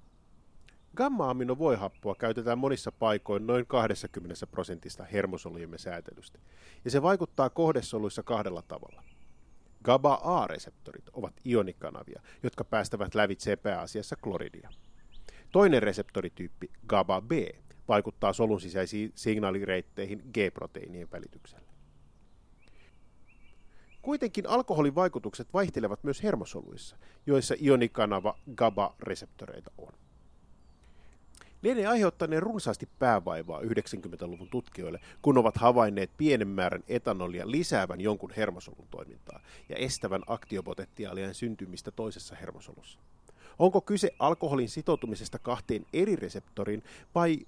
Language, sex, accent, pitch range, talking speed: Finnish, male, native, 95-145 Hz, 90 wpm